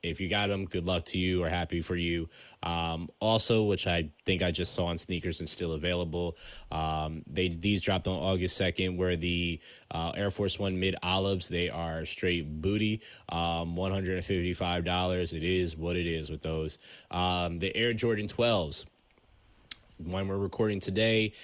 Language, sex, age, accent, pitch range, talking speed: Finnish, male, 20-39, American, 85-100 Hz, 170 wpm